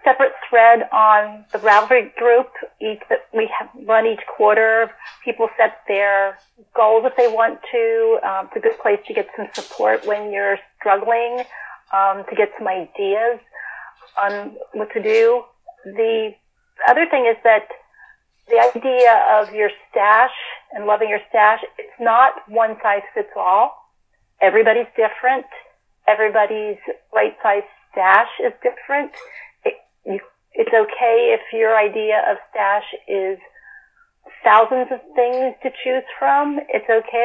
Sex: female